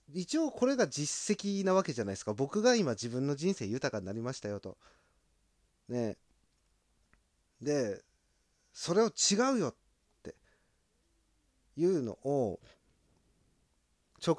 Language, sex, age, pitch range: Japanese, male, 30-49, 115-195 Hz